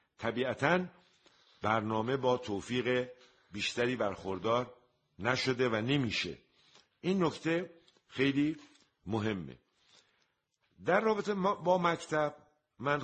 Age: 50-69